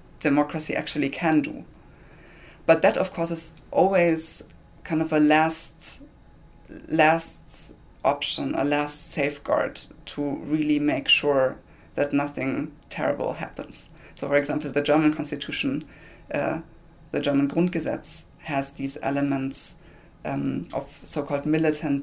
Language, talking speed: English, 120 wpm